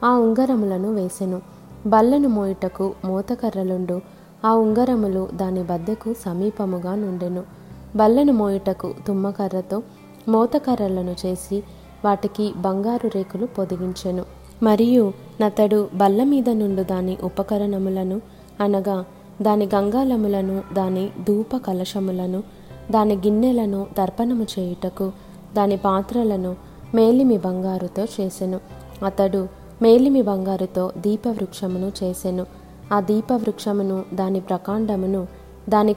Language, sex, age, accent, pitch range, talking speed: Telugu, female, 20-39, native, 190-220 Hz, 85 wpm